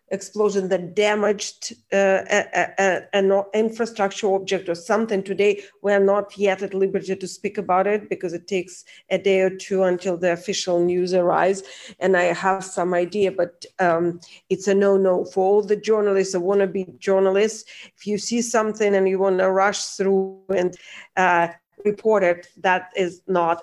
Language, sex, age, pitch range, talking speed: English, female, 40-59, 185-220 Hz, 165 wpm